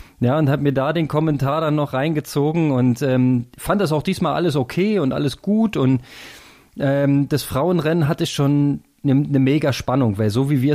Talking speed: 195 wpm